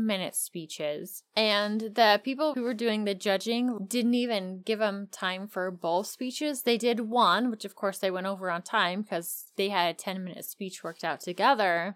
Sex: female